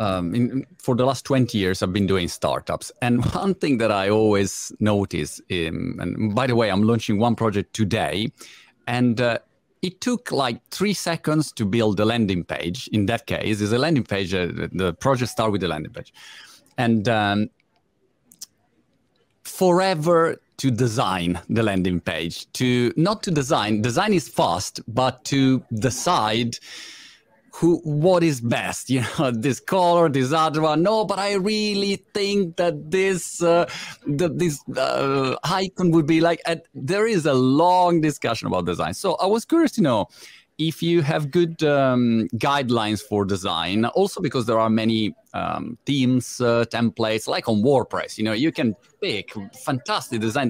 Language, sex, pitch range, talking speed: Italian, male, 110-165 Hz, 165 wpm